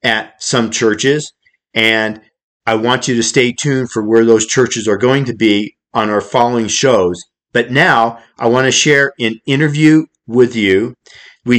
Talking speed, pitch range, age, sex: 170 wpm, 115-135 Hz, 50-69, male